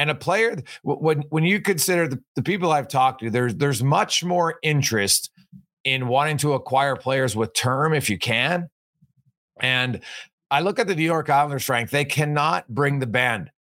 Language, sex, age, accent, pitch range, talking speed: English, male, 40-59, American, 130-175 Hz, 185 wpm